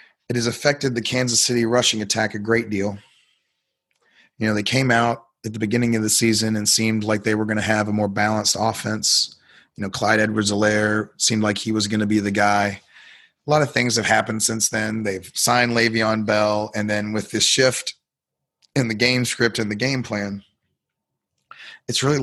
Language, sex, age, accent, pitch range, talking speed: English, male, 30-49, American, 105-120 Hz, 200 wpm